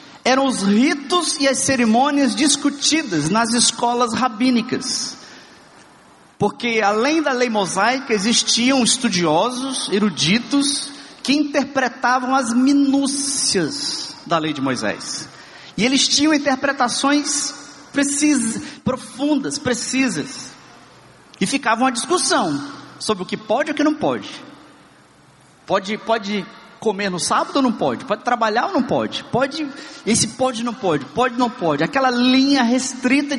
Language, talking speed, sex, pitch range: Portuguese, 125 wpm, male, 205-275 Hz